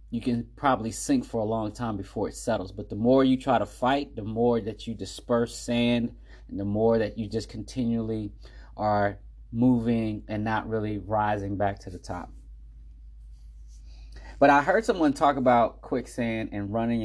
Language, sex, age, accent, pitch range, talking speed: English, male, 30-49, American, 85-120 Hz, 175 wpm